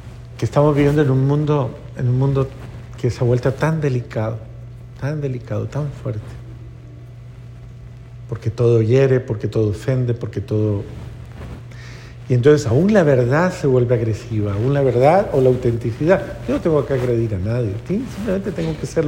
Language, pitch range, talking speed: Spanish, 120-160 Hz, 165 wpm